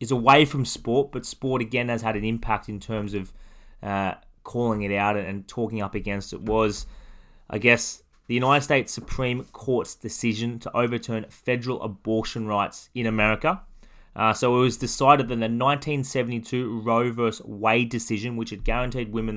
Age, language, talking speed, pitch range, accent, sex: 20-39, English, 170 wpm, 105-125 Hz, Australian, male